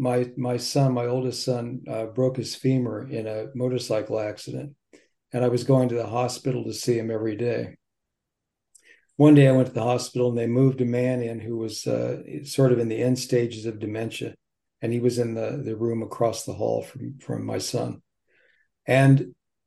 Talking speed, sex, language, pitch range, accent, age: 200 wpm, male, English, 115-135 Hz, American, 50-69